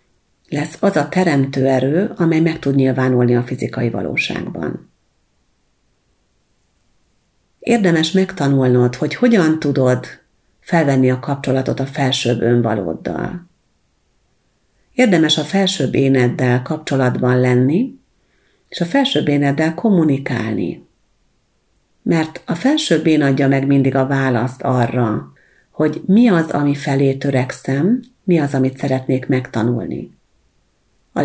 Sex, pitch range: female, 130-170 Hz